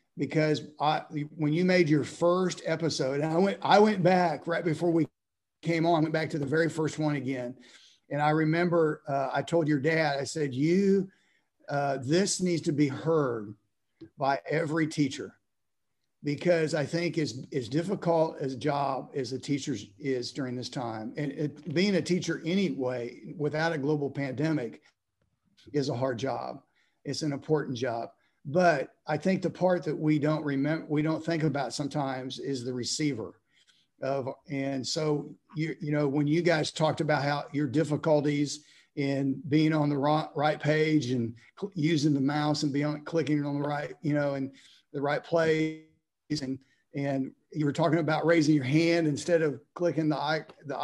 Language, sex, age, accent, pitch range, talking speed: English, male, 50-69, American, 140-160 Hz, 175 wpm